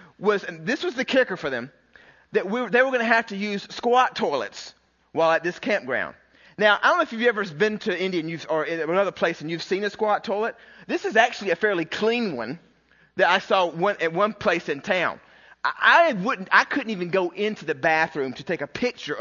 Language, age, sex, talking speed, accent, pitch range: English, 30-49, male, 235 wpm, American, 160-215 Hz